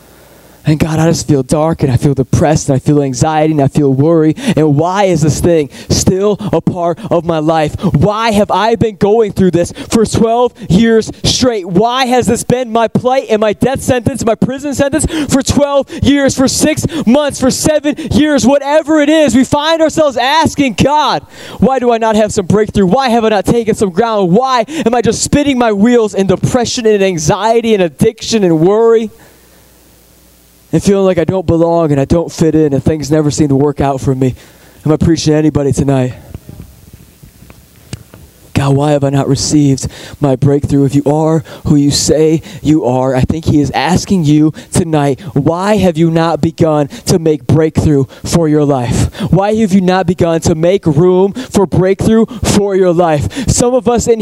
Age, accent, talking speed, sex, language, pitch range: 20-39, American, 195 wpm, male, English, 155-250 Hz